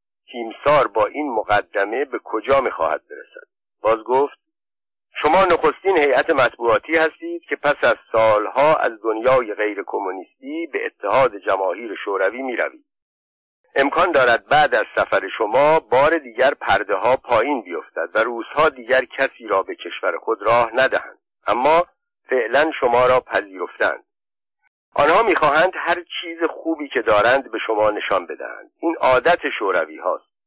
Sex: male